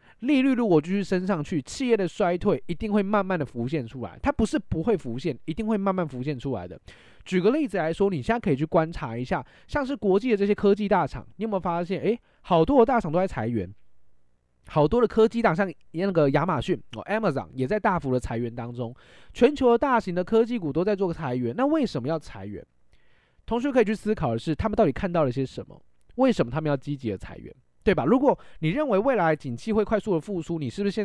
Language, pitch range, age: Chinese, 135-215 Hz, 20-39